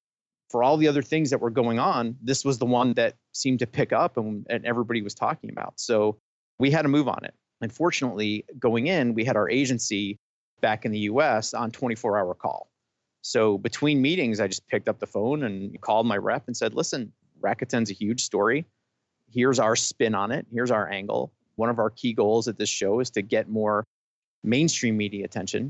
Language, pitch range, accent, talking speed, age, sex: English, 105-130 Hz, American, 210 wpm, 30-49, male